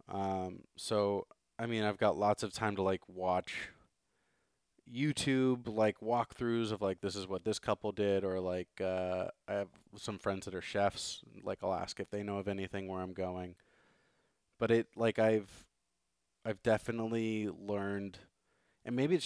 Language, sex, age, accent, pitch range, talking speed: English, male, 20-39, American, 95-110 Hz, 170 wpm